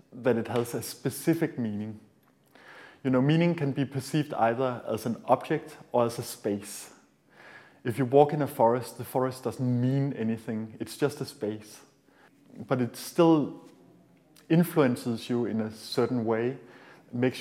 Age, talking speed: 30-49, 155 wpm